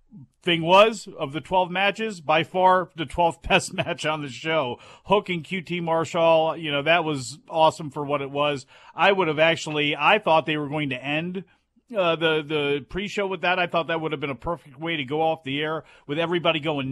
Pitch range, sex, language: 145-180 Hz, male, English